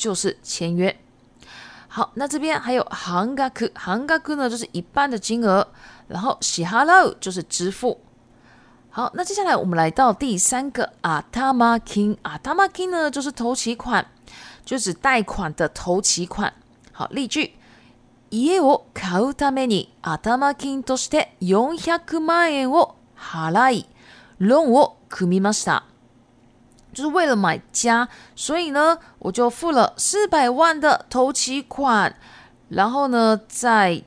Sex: female